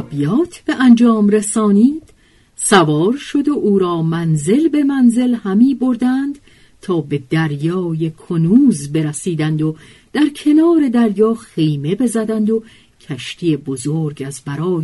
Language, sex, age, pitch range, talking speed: Persian, female, 50-69, 160-240 Hz, 120 wpm